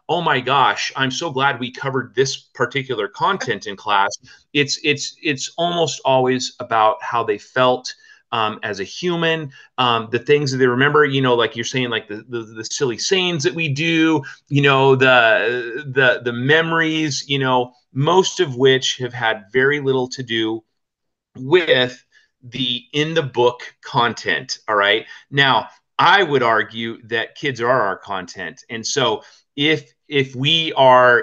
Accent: American